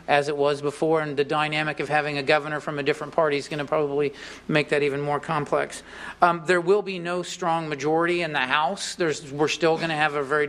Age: 50-69